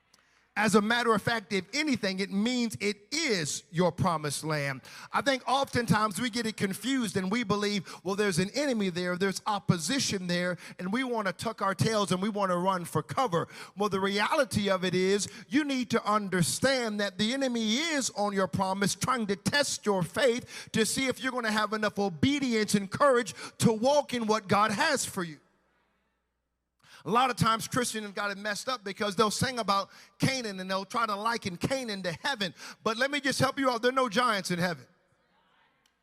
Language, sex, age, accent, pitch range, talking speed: English, male, 50-69, American, 195-255 Hz, 205 wpm